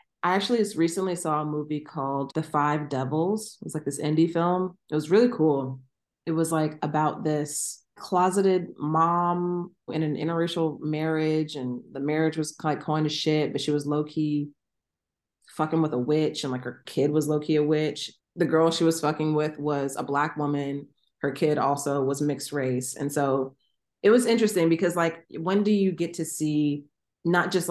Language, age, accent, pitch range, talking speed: English, 30-49, American, 140-165 Hz, 190 wpm